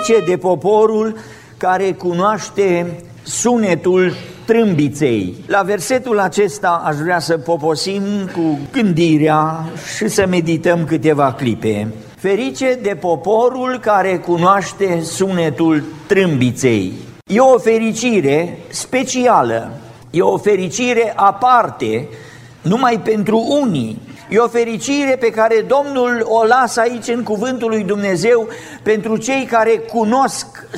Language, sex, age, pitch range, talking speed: Romanian, male, 50-69, 170-230 Hz, 110 wpm